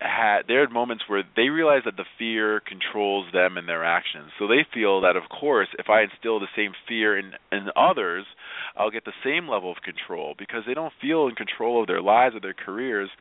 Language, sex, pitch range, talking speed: English, male, 90-125 Hz, 225 wpm